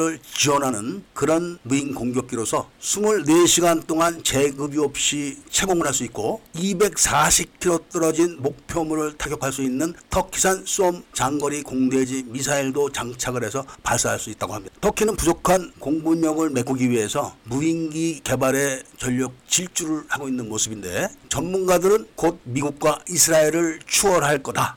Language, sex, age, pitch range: Korean, male, 50-69, 130-165 Hz